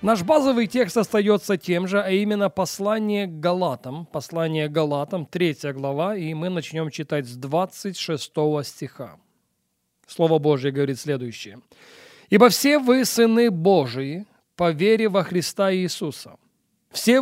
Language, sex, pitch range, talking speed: Russian, male, 150-195 Hz, 130 wpm